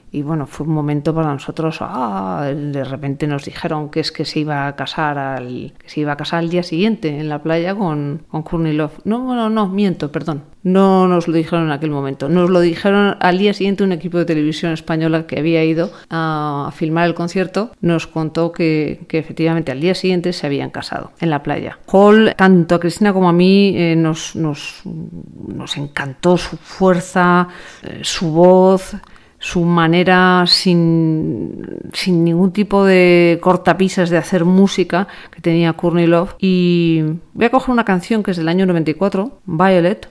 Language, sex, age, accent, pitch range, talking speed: Spanish, female, 40-59, Spanish, 160-185 Hz, 185 wpm